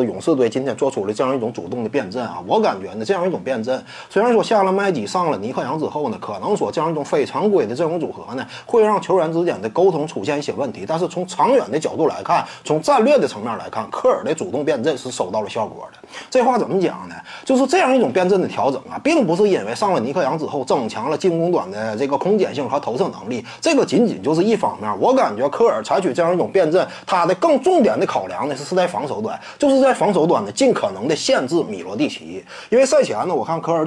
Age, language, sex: 30-49, Chinese, male